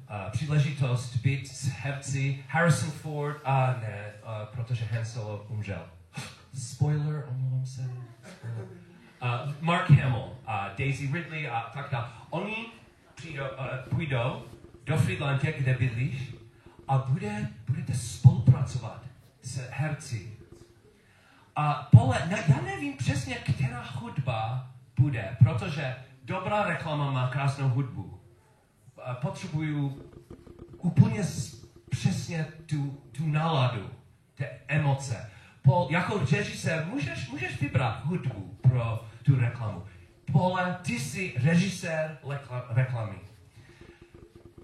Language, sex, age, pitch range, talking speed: Czech, male, 40-59, 115-140 Hz, 110 wpm